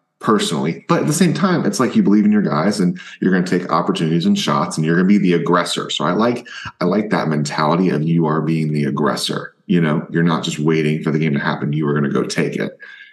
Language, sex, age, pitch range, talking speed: English, male, 20-39, 75-110 Hz, 270 wpm